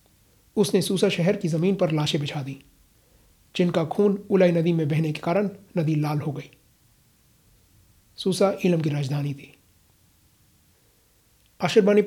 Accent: native